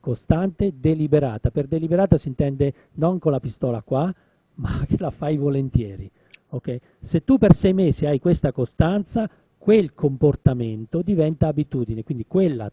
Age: 40-59